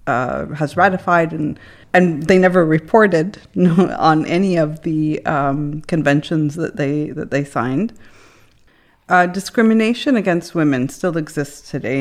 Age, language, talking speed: 40-59, English, 135 wpm